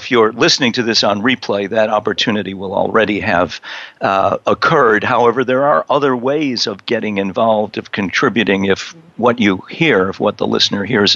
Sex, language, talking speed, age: male, English, 180 wpm, 50-69